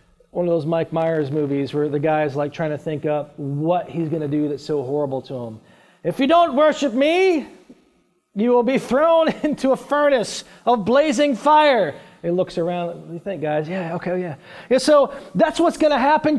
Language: English